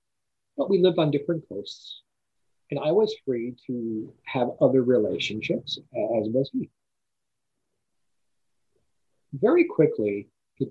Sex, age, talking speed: male, 40-59, 110 wpm